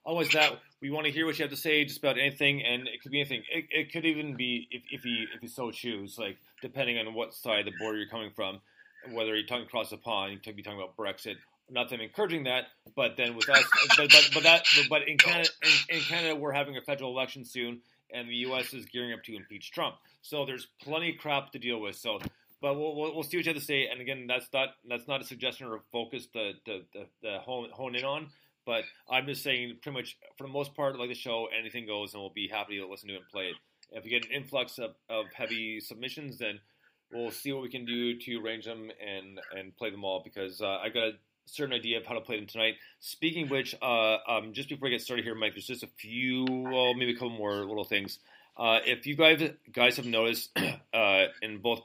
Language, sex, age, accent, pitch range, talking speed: English, male, 30-49, American, 110-140 Hz, 255 wpm